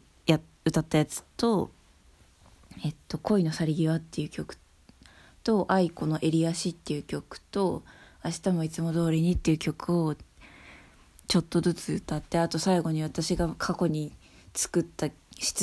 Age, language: 20-39, Japanese